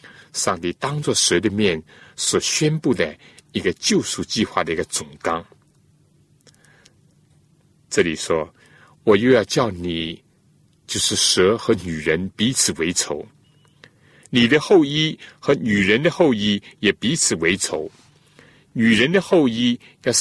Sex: male